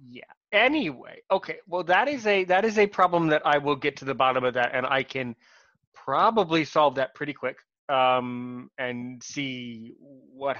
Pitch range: 130-170 Hz